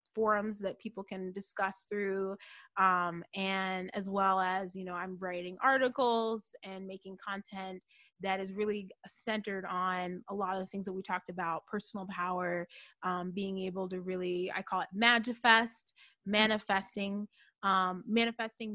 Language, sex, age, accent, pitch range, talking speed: English, female, 20-39, American, 190-220 Hz, 150 wpm